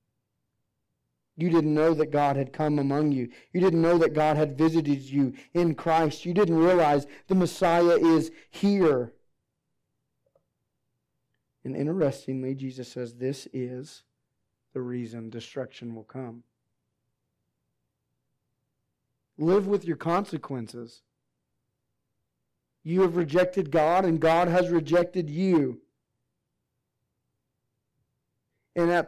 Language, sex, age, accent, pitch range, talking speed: English, male, 40-59, American, 140-185 Hz, 105 wpm